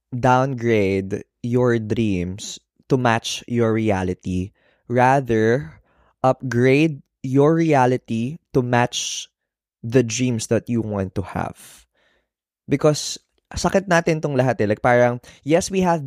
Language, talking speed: Filipino, 115 wpm